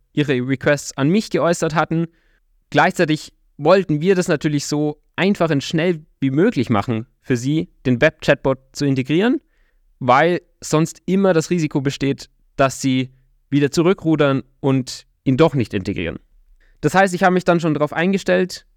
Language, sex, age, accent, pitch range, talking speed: German, male, 20-39, German, 135-175 Hz, 155 wpm